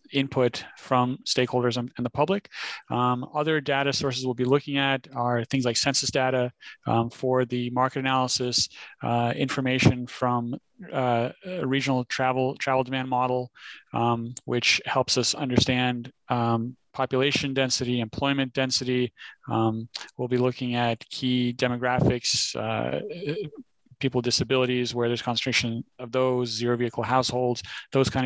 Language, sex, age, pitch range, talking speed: English, male, 30-49, 120-135 Hz, 135 wpm